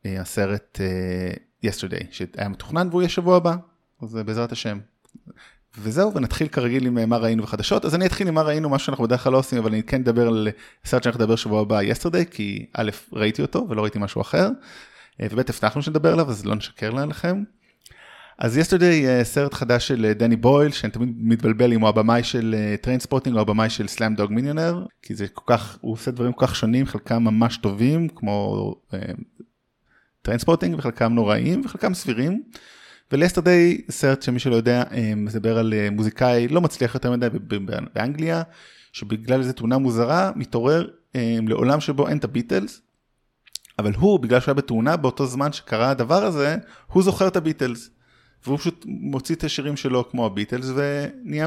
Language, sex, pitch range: Hebrew, male, 110-150 Hz